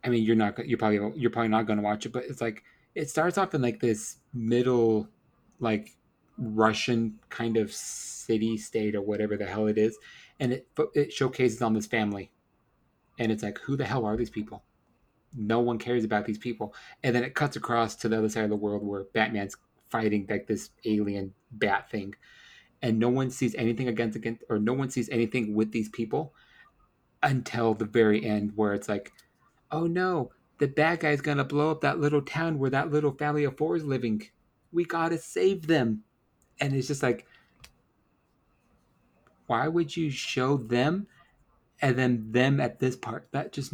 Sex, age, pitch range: male, 30-49, 110-130 Hz